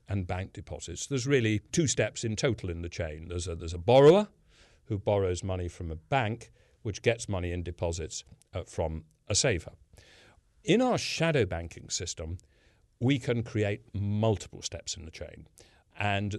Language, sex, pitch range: English, male, 90-120 Hz